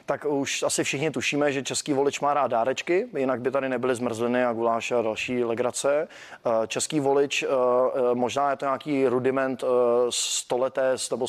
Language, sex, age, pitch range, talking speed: Czech, male, 20-39, 125-140 Hz, 160 wpm